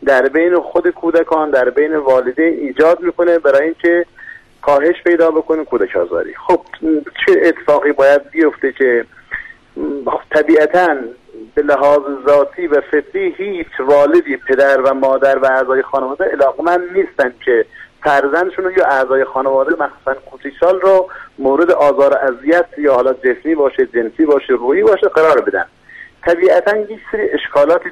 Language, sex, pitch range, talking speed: Persian, male, 135-185 Hz, 135 wpm